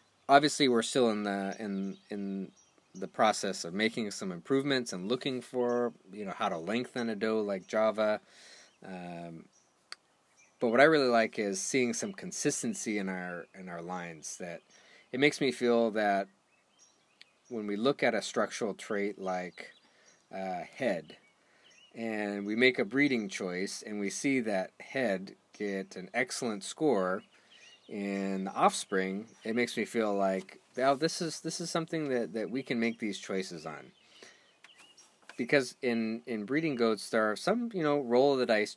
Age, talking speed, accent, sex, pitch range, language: 30-49, 160 wpm, American, male, 95-130 Hz, English